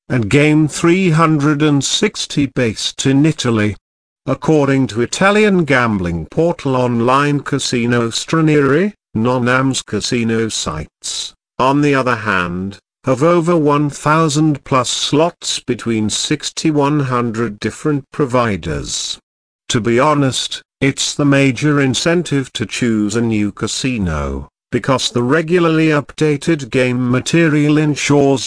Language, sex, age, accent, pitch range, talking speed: English, male, 50-69, British, 115-145 Hz, 105 wpm